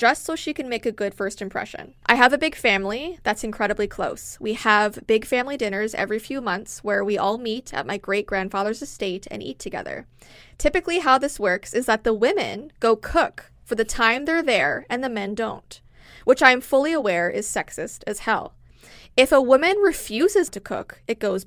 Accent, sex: American, female